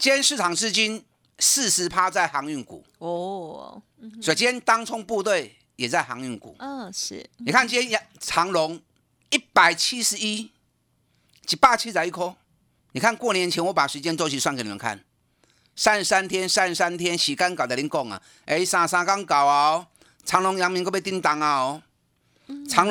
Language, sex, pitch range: Chinese, male, 160-225 Hz